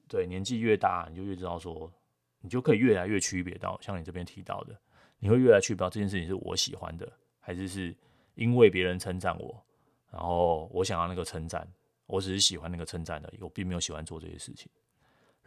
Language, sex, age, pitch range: Chinese, male, 20-39, 85-115 Hz